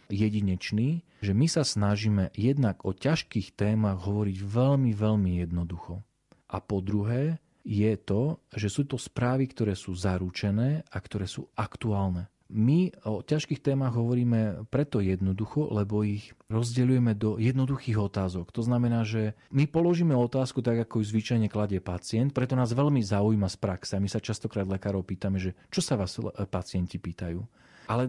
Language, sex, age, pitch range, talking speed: Slovak, male, 40-59, 100-130 Hz, 155 wpm